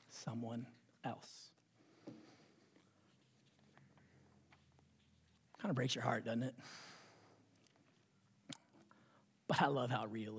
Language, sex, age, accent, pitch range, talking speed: English, male, 40-59, American, 125-210 Hz, 80 wpm